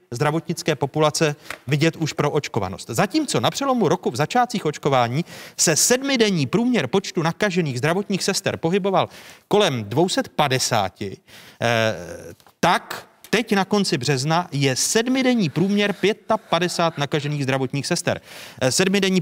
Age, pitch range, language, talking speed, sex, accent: 30-49, 130-180 Hz, Czech, 110 wpm, male, native